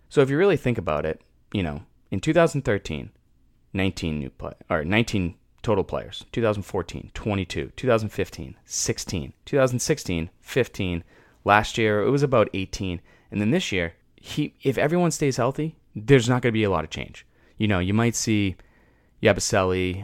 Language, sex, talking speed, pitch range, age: English, male, 160 wpm, 85-115 Hz, 20-39